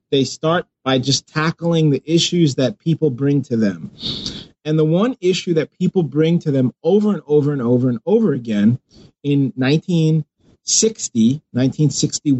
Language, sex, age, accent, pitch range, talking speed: English, male, 30-49, American, 130-165 Hz, 150 wpm